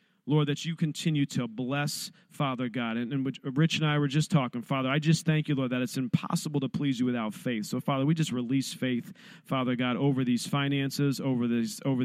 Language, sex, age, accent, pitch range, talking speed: English, male, 40-59, American, 135-175 Hz, 215 wpm